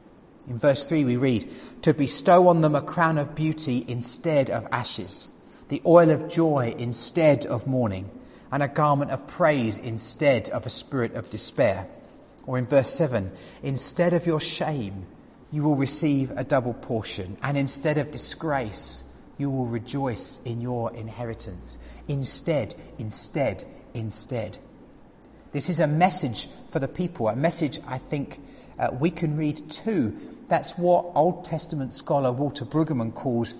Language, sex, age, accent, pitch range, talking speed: English, male, 40-59, British, 120-155 Hz, 150 wpm